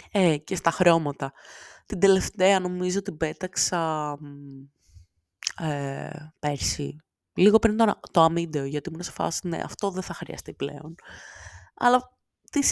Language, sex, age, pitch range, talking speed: Greek, female, 20-39, 155-245 Hz, 125 wpm